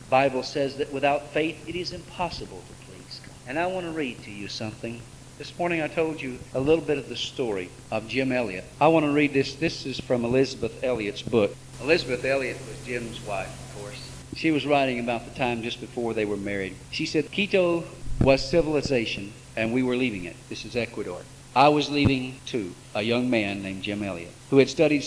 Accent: American